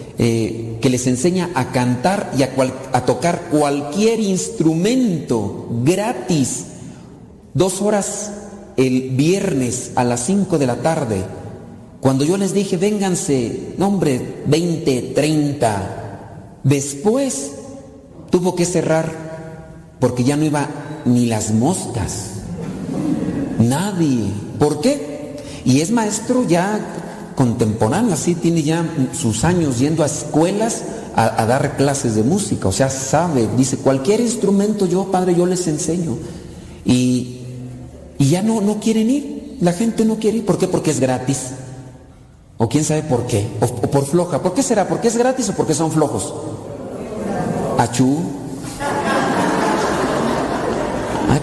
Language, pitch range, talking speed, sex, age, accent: Spanish, 130-180 Hz, 135 wpm, male, 40-59, Mexican